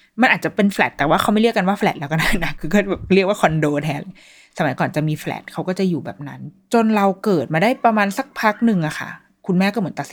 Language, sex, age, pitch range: Thai, female, 20-39, 155-200 Hz